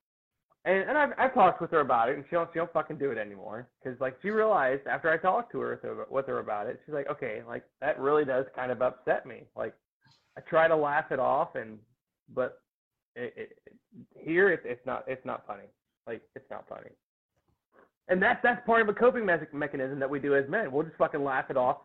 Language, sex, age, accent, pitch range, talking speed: English, male, 20-39, American, 135-180 Hz, 235 wpm